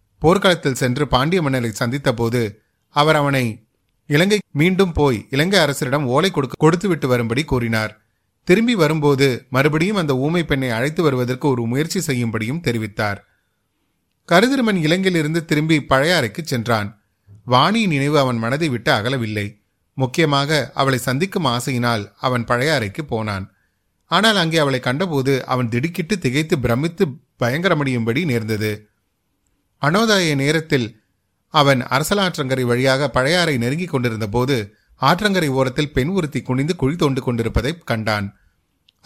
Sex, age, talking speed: male, 30-49, 115 wpm